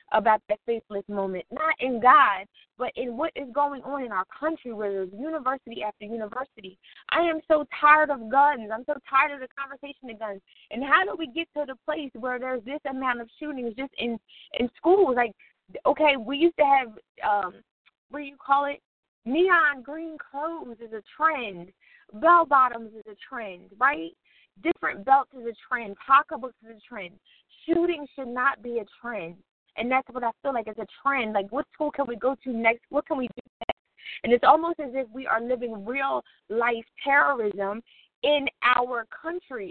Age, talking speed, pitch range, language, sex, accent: 20-39, 190 wpm, 235-295 Hz, English, female, American